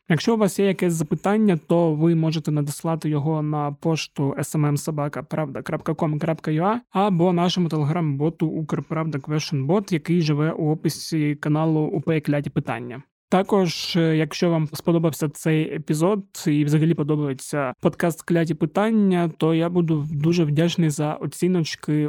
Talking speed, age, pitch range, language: 120 wpm, 20-39, 150-175 Hz, Ukrainian